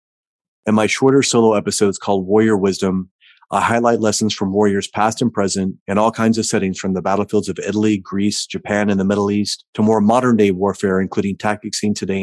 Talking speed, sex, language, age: 195 wpm, male, English, 30-49